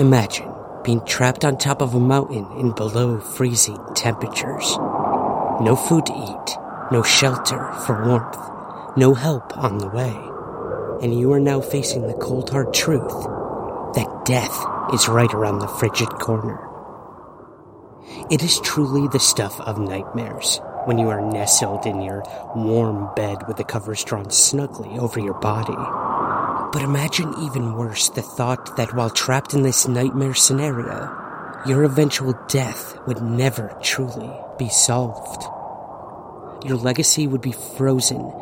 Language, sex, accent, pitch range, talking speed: English, male, American, 115-135 Hz, 140 wpm